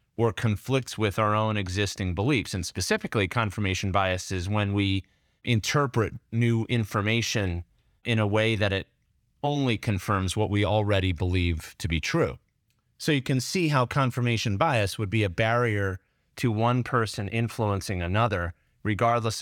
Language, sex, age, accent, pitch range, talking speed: English, male, 30-49, American, 95-120 Hz, 150 wpm